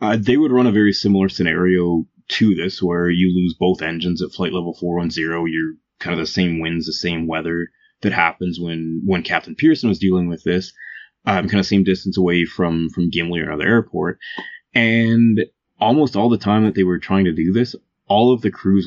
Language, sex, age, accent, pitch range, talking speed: English, male, 20-39, American, 85-100 Hz, 210 wpm